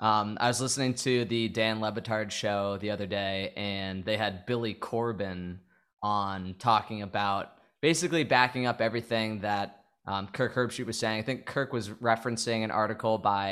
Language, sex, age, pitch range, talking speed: English, male, 20-39, 105-125 Hz, 170 wpm